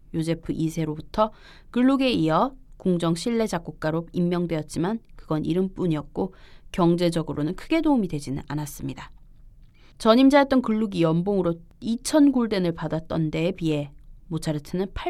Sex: female